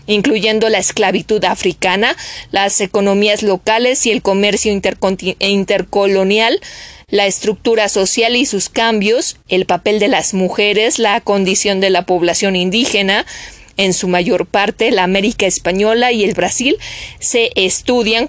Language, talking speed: Spanish, 130 wpm